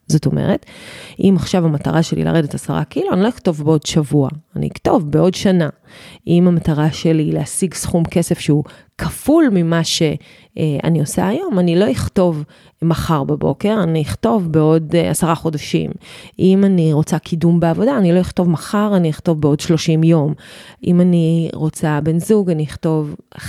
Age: 20-39